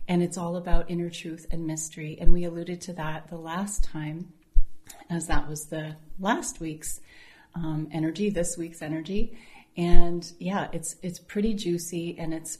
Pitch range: 160-175 Hz